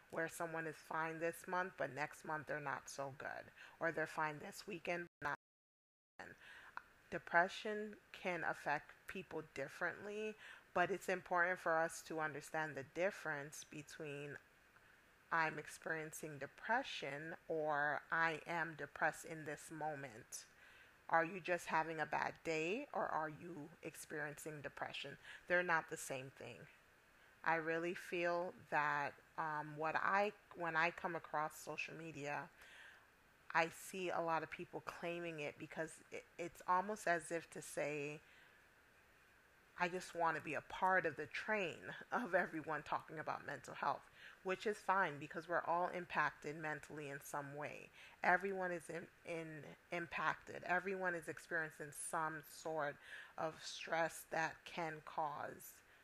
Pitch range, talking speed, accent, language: 150-175 Hz, 140 wpm, American, English